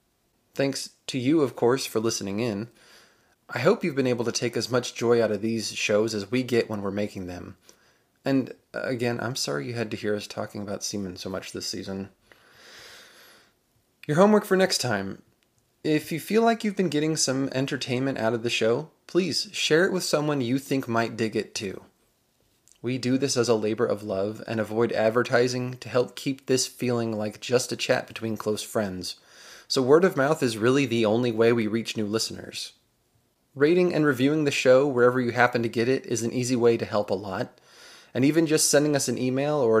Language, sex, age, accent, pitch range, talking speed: English, male, 20-39, American, 110-135 Hz, 205 wpm